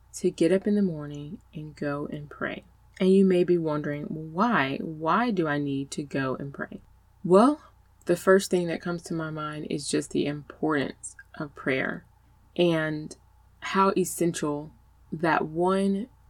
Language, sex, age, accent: English, female, 20-39, American